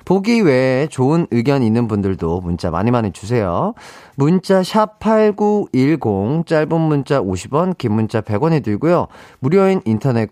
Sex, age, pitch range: male, 30-49, 110-175 Hz